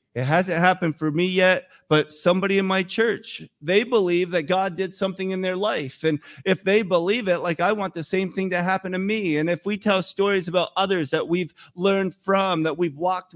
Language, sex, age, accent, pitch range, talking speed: English, male, 40-59, American, 145-195 Hz, 220 wpm